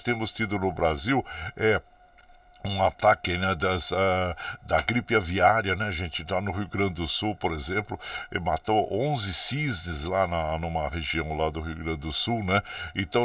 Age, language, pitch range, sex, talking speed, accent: 60-79, Portuguese, 95-125 Hz, male, 160 wpm, Brazilian